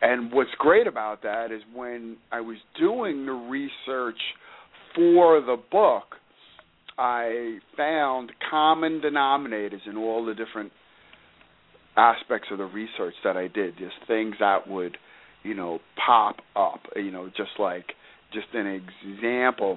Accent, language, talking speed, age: American, English, 135 wpm, 50-69